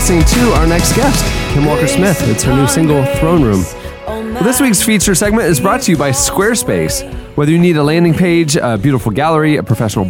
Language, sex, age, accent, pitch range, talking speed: English, male, 30-49, American, 120-170 Hz, 210 wpm